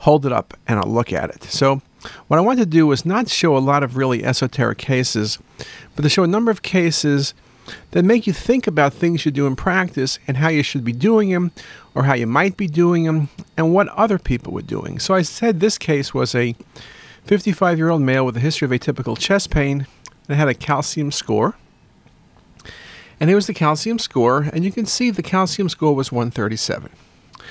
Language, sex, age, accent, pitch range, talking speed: English, male, 40-59, American, 130-185 Hz, 210 wpm